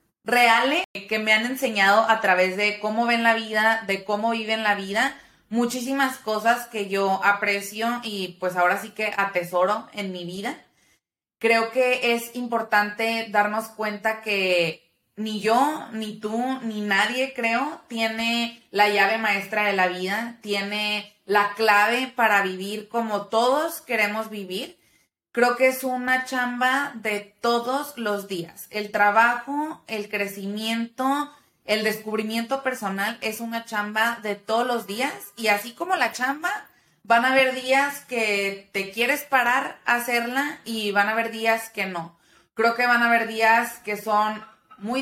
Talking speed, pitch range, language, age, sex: 155 wpm, 205-245 Hz, Spanish, 20-39, female